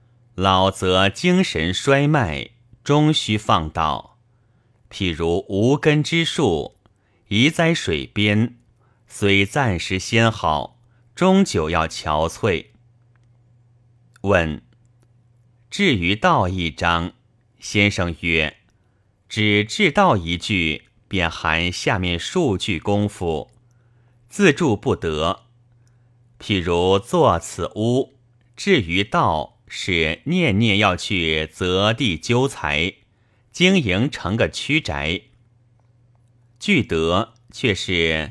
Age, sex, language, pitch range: 30-49, male, Chinese, 95-120 Hz